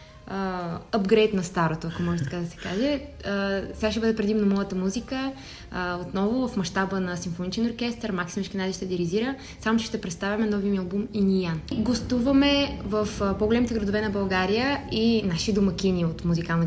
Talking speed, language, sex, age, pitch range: 175 wpm, Bulgarian, female, 20-39, 185-220 Hz